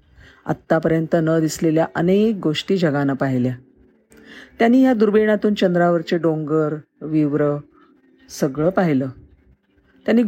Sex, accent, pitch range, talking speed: female, native, 145-200 Hz, 95 wpm